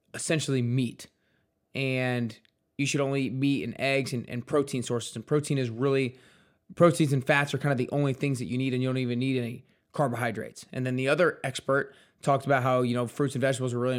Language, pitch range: English, 125-150 Hz